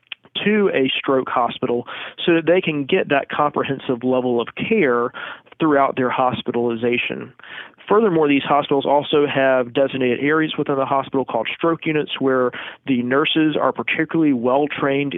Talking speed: 140 wpm